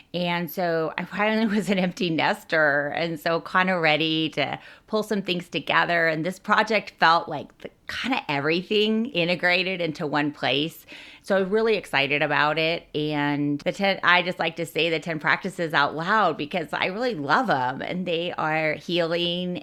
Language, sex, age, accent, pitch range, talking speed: English, female, 30-49, American, 145-175 Hz, 175 wpm